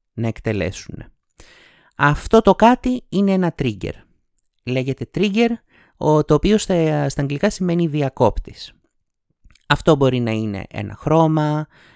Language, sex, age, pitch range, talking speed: Greek, male, 30-49, 125-180 Hz, 120 wpm